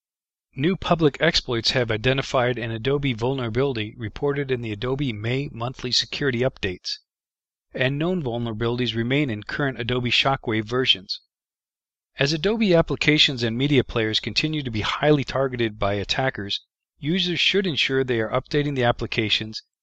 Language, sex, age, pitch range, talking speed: English, male, 40-59, 115-140 Hz, 140 wpm